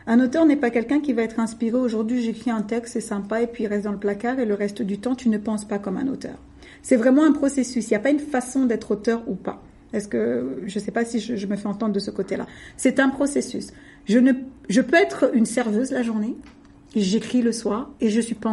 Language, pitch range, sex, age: French, 230-285 Hz, female, 50-69